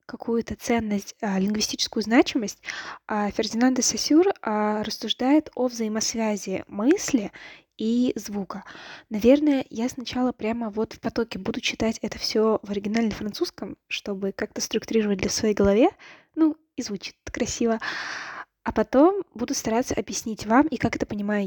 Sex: female